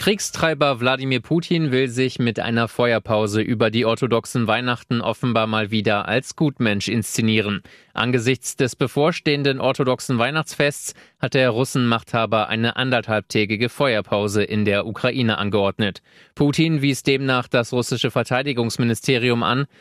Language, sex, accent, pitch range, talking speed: German, male, German, 110-130 Hz, 120 wpm